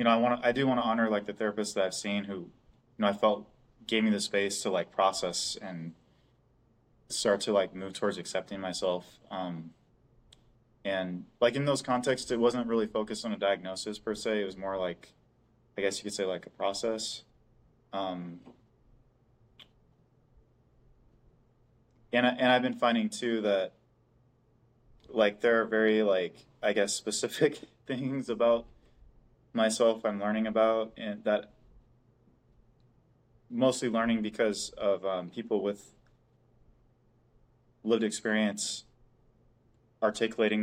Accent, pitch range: American, 100-120 Hz